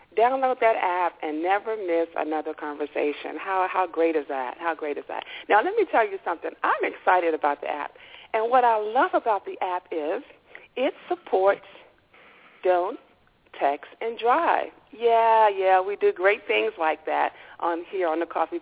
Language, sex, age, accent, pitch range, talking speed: English, female, 50-69, American, 175-260 Hz, 175 wpm